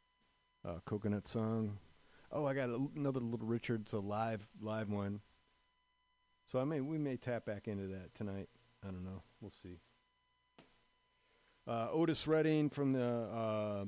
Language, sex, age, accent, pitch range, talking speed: English, male, 40-59, American, 110-130 Hz, 150 wpm